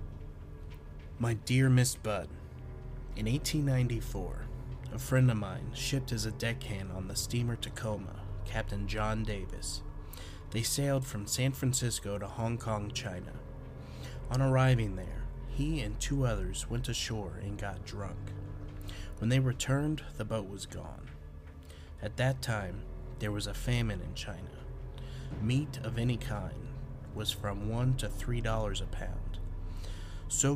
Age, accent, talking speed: 30-49, American, 140 wpm